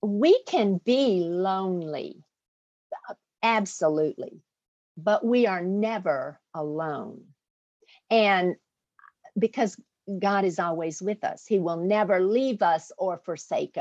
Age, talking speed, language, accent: 50-69, 105 wpm, English, American